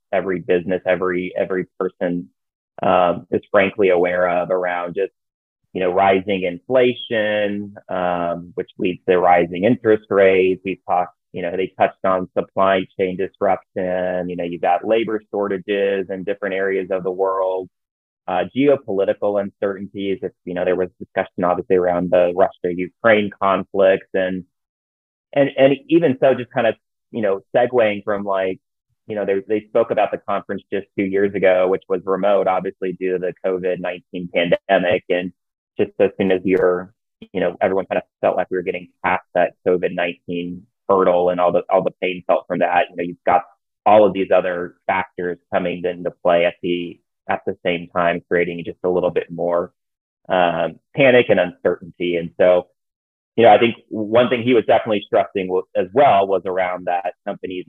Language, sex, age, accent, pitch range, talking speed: English, male, 30-49, American, 90-100 Hz, 175 wpm